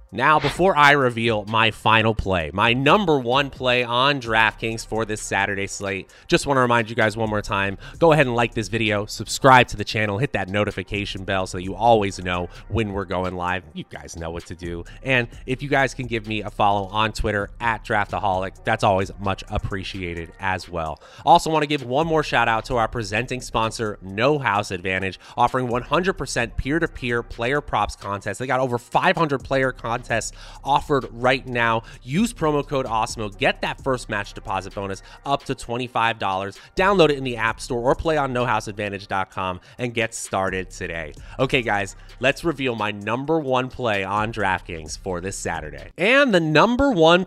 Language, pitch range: English, 100-135 Hz